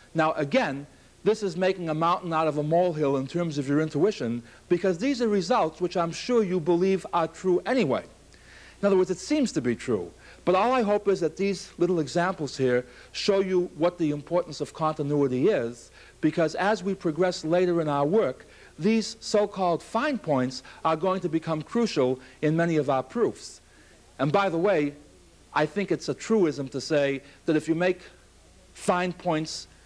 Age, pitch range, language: 60-79, 135-180 Hz, English